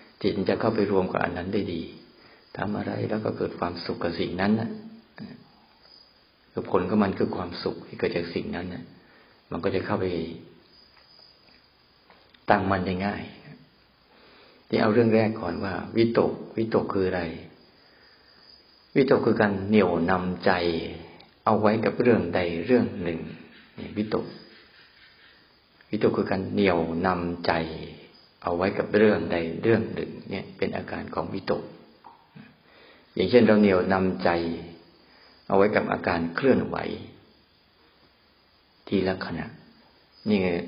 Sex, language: male, Thai